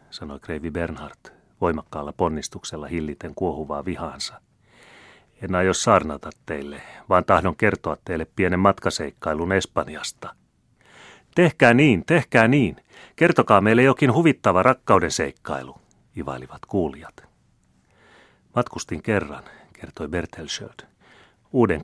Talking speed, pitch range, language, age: 100 wpm, 75-100 Hz, Finnish, 30-49